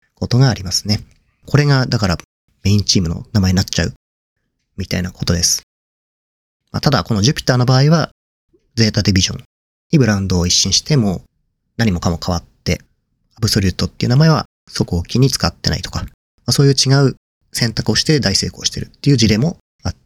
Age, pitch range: 40-59, 95-130 Hz